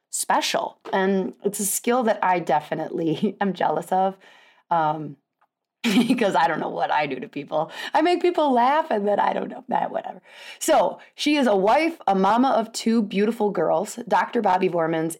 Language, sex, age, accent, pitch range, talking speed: English, female, 20-39, American, 165-210 Hz, 180 wpm